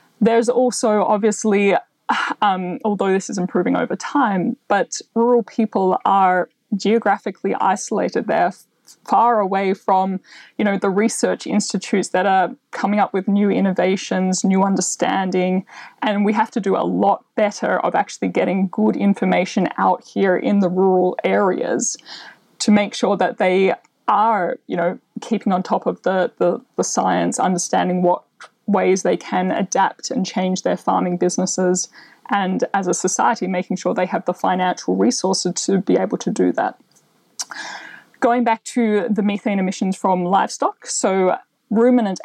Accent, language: Australian, English